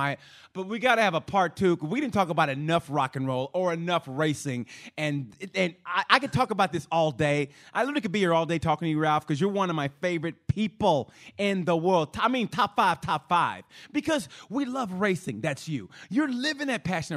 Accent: American